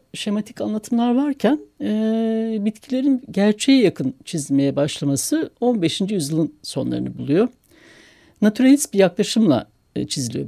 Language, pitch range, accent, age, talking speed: Turkish, 155-235 Hz, native, 60-79, 90 wpm